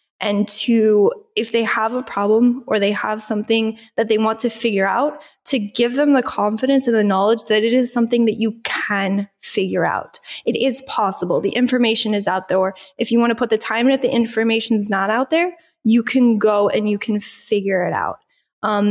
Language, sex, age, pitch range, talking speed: English, female, 10-29, 210-235 Hz, 215 wpm